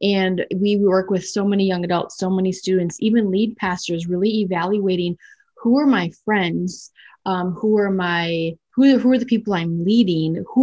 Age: 20-39